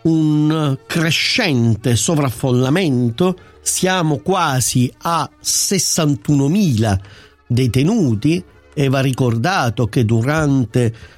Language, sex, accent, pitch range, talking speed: Italian, male, native, 120-160 Hz, 70 wpm